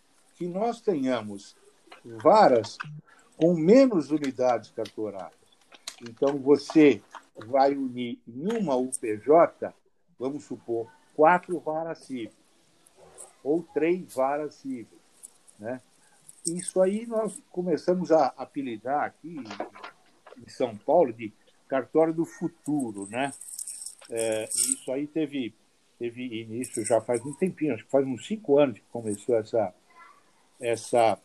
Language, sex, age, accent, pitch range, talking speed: Portuguese, male, 60-79, Brazilian, 125-175 Hz, 115 wpm